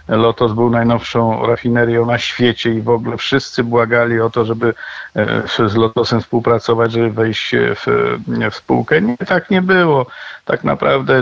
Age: 50-69